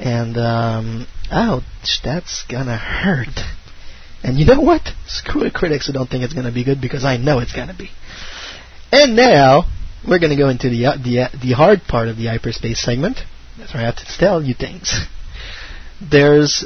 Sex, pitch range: male, 120-145 Hz